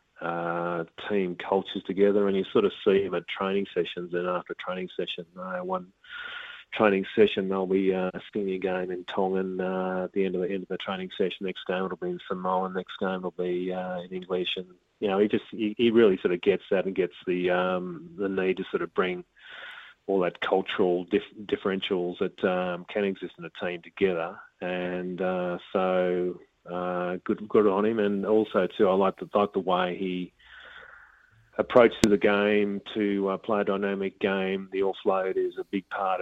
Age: 30-49